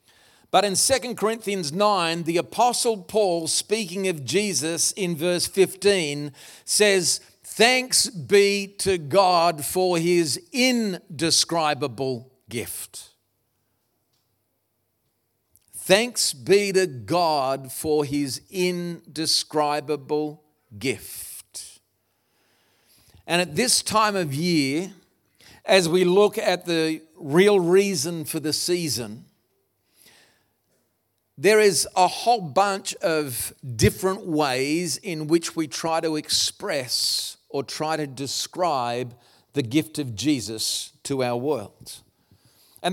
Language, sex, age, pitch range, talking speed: English, male, 50-69, 130-180 Hz, 100 wpm